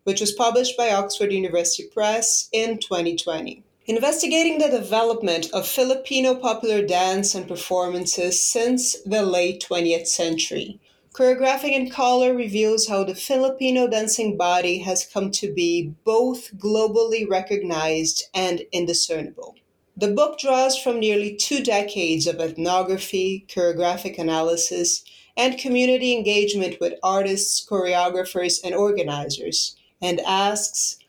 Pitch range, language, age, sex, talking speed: 175-225 Hz, English, 30-49, female, 120 wpm